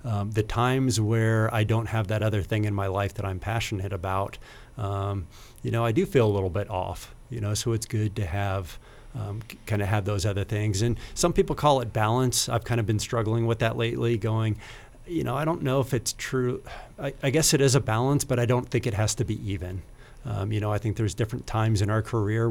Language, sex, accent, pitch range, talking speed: English, male, American, 105-125 Hz, 240 wpm